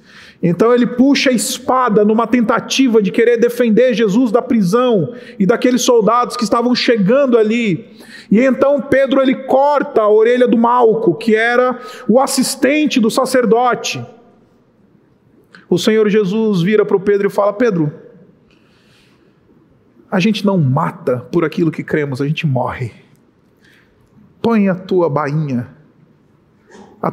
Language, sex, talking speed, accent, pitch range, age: Portuguese, male, 135 wpm, Brazilian, 150-230 Hz, 40-59